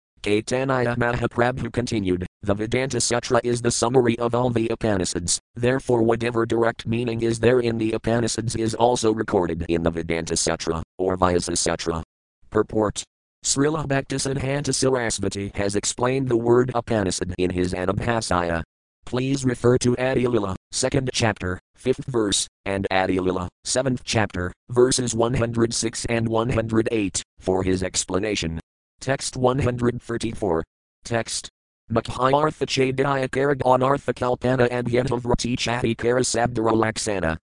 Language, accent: English, American